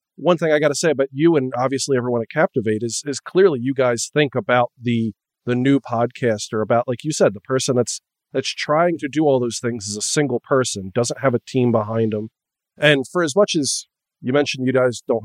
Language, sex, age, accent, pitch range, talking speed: English, male, 40-59, American, 120-160 Hz, 230 wpm